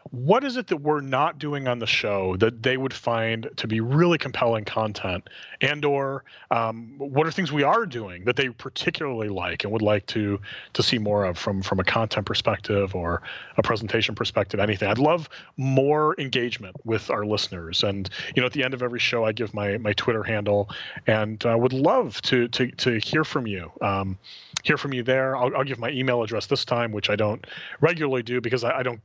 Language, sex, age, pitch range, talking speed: English, male, 30-49, 105-135 Hz, 215 wpm